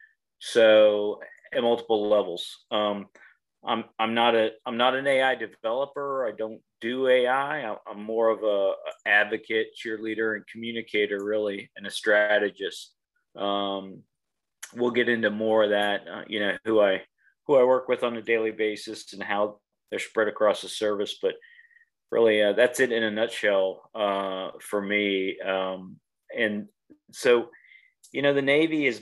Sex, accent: male, American